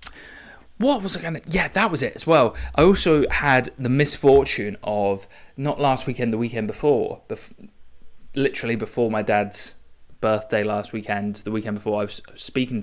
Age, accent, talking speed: 20-39, British, 175 wpm